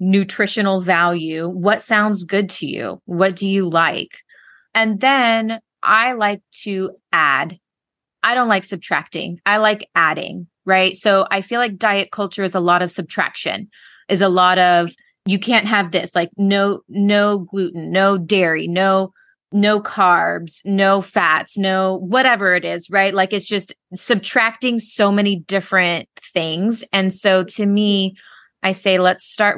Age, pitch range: 20-39, 175-210 Hz